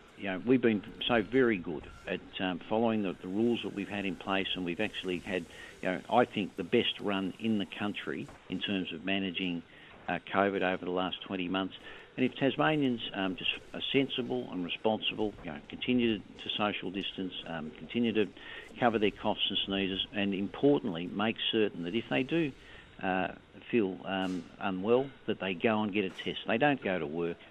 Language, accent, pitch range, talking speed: English, Australian, 90-105 Hz, 195 wpm